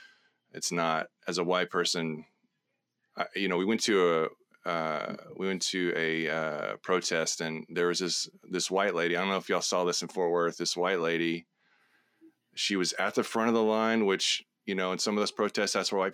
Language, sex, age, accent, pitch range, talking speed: English, male, 30-49, American, 90-115 Hz, 210 wpm